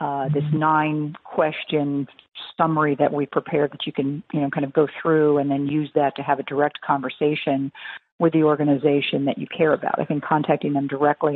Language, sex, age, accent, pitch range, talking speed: English, female, 50-69, American, 145-160 Hz, 195 wpm